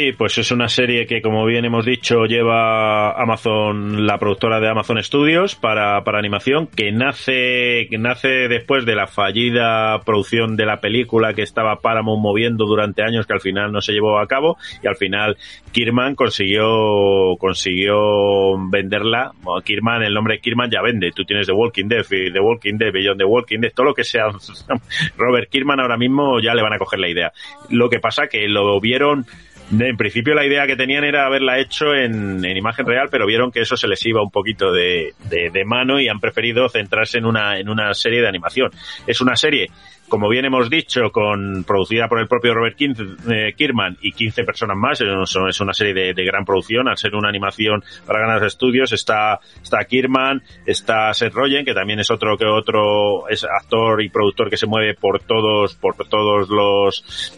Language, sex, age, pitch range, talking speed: Spanish, male, 30-49, 105-120 Hz, 195 wpm